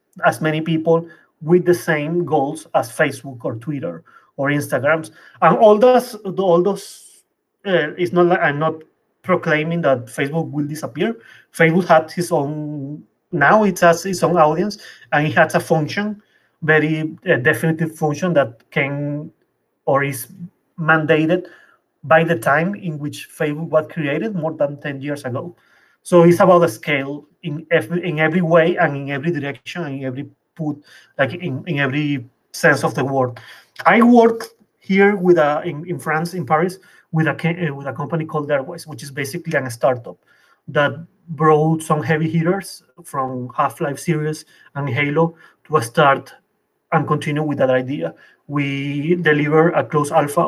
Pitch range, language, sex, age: 145-175 Hz, English, male, 30-49